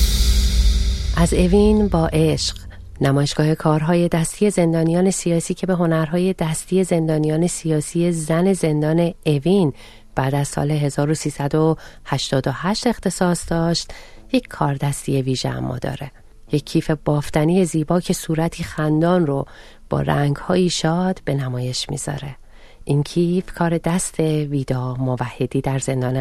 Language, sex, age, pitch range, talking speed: Persian, female, 40-59, 135-175 Hz, 120 wpm